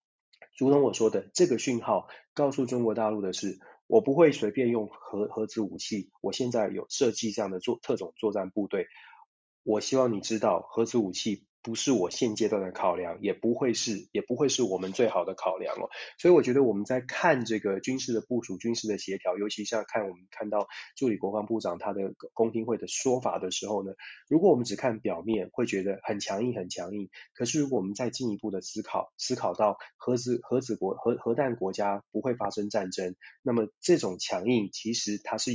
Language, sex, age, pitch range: Chinese, male, 20-39, 105-125 Hz